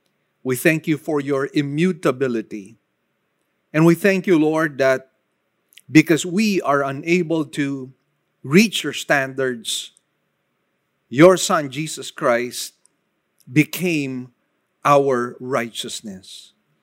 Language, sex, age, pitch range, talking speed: English, male, 50-69, 135-170 Hz, 95 wpm